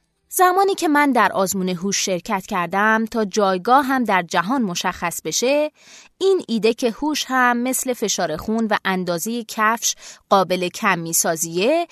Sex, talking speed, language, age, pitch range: female, 150 wpm, Persian, 20-39, 195-290 Hz